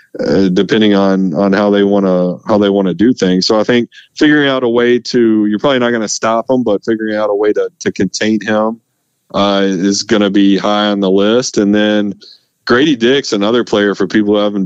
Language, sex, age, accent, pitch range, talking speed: English, male, 30-49, American, 90-105 Hz, 235 wpm